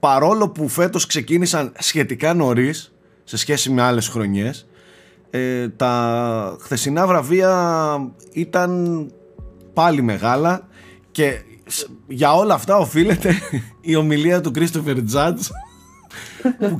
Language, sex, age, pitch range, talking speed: Greek, male, 30-49, 115-165 Hz, 100 wpm